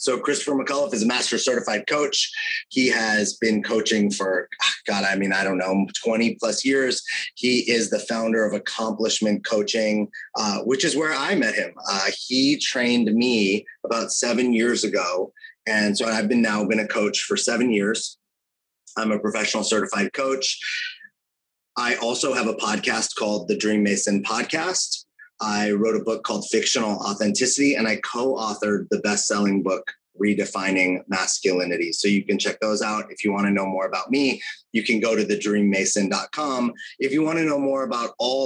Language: English